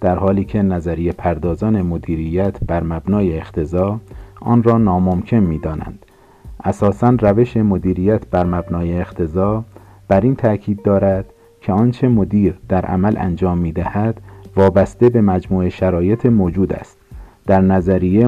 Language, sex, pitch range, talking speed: Persian, male, 90-105 Hz, 125 wpm